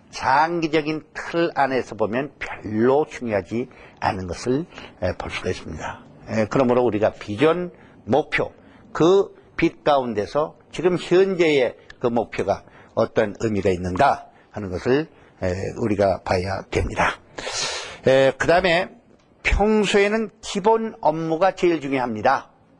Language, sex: Korean, male